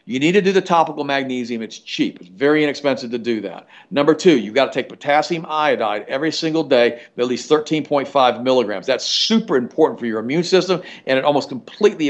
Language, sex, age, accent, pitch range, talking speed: English, male, 50-69, American, 125-165 Hz, 205 wpm